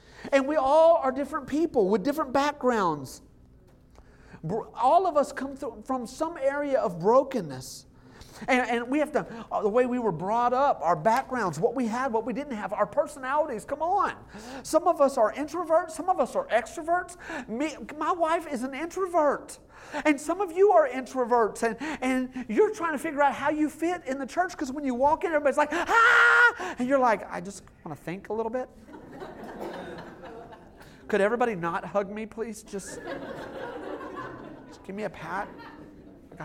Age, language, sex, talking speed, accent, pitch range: 40-59, English, male, 180 wpm, American, 250-320 Hz